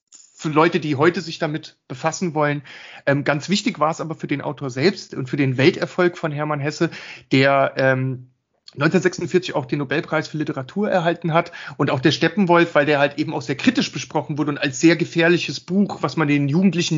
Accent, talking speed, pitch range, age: German, 195 wpm, 135-165 Hz, 30-49